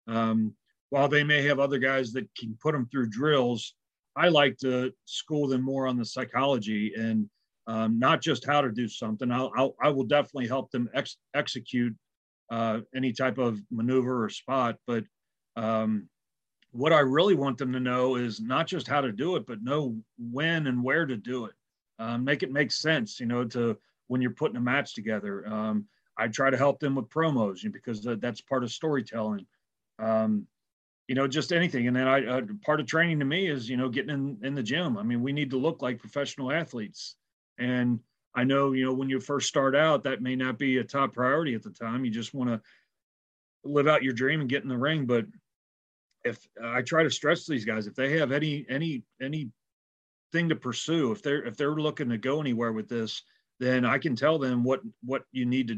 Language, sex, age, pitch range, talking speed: English, male, 40-59, 115-145 Hz, 215 wpm